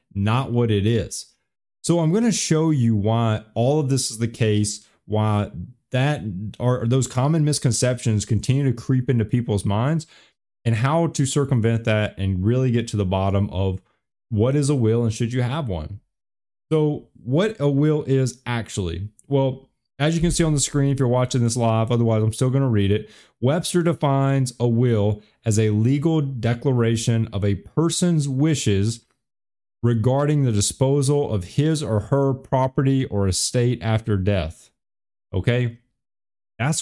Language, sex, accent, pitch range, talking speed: English, male, American, 110-140 Hz, 165 wpm